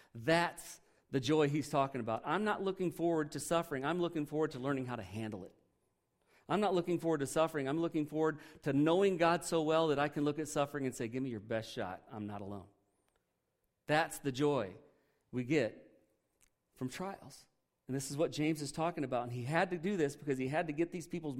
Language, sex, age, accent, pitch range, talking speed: English, male, 40-59, American, 115-160 Hz, 220 wpm